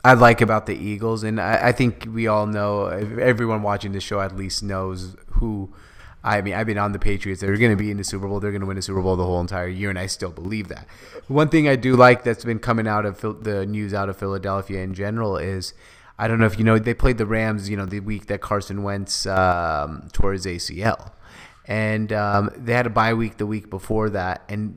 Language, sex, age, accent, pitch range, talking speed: English, male, 30-49, American, 100-120 Hz, 245 wpm